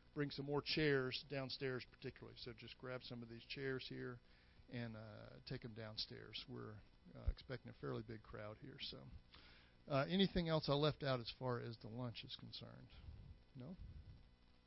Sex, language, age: male, English, 50-69